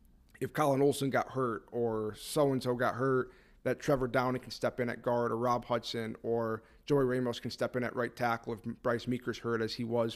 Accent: American